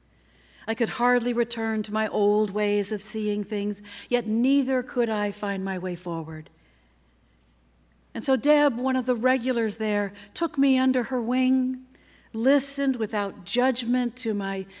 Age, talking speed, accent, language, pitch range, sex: 60-79, 150 wpm, American, English, 160-255 Hz, female